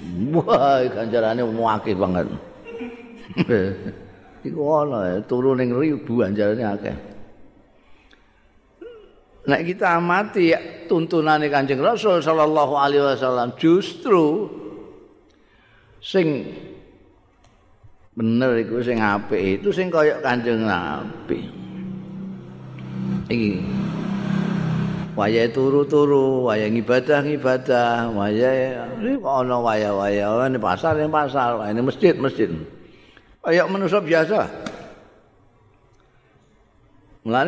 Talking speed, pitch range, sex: 60 wpm, 110-155 Hz, male